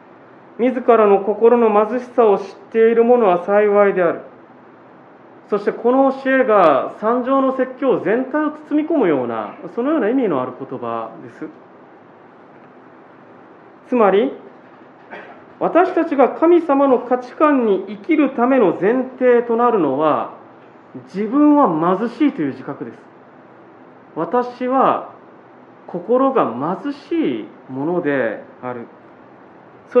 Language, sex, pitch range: Japanese, male, 180-260 Hz